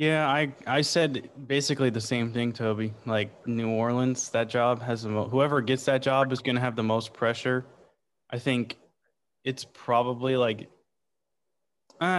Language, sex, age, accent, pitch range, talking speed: English, male, 20-39, American, 110-130 Hz, 165 wpm